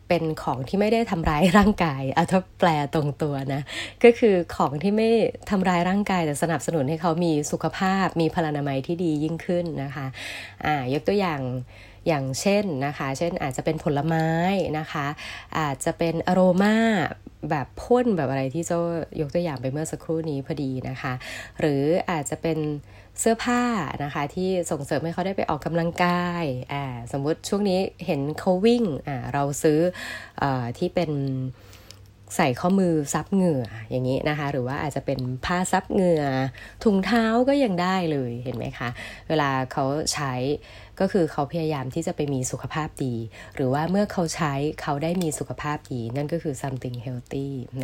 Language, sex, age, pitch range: Thai, female, 20-39, 135-175 Hz